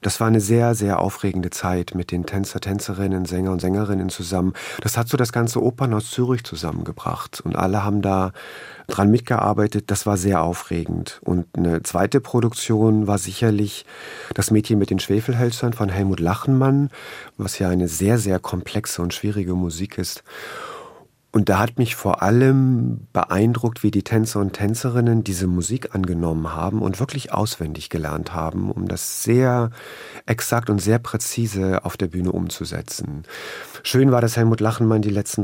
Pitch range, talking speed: 95-115 Hz, 165 wpm